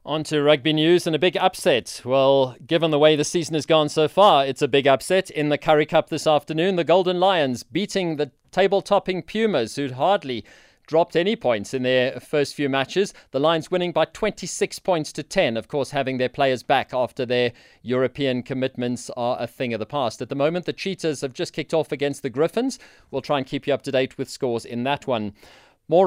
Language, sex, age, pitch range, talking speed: English, male, 30-49, 135-170 Hz, 220 wpm